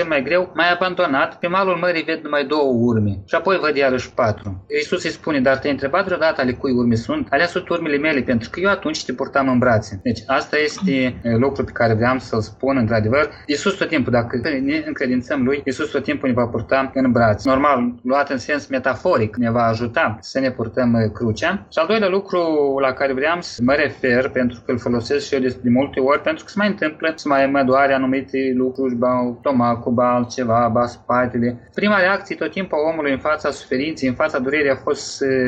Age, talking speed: 20-39, 195 wpm